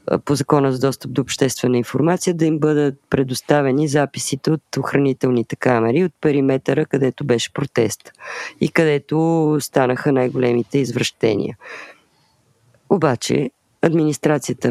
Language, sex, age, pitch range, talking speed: Bulgarian, female, 20-39, 125-155 Hz, 110 wpm